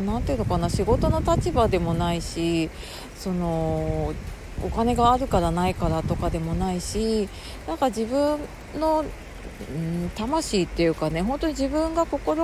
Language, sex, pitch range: Japanese, female, 165-235 Hz